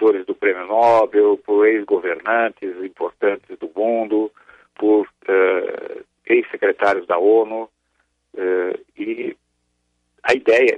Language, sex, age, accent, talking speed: Portuguese, male, 50-69, Brazilian, 95 wpm